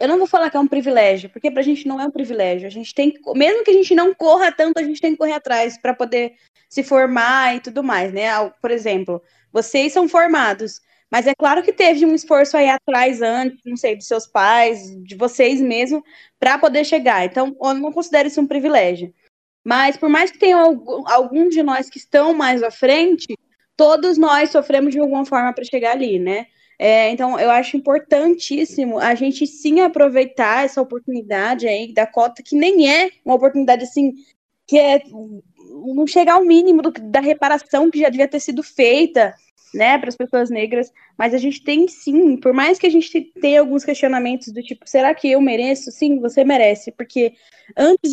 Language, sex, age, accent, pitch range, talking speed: Portuguese, female, 10-29, Brazilian, 240-300 Hz, 200 wpm